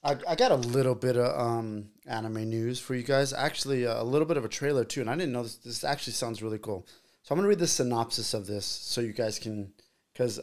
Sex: male